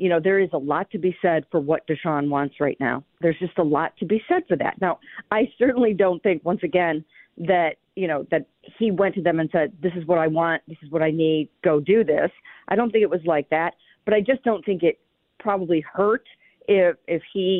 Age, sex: 40-59, female